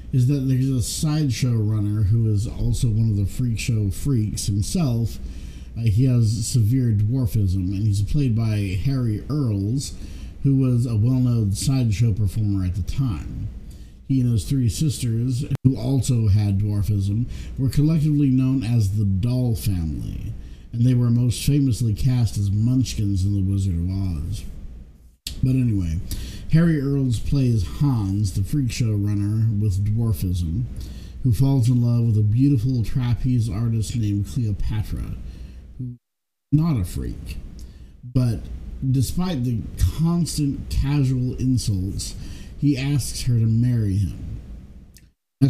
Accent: American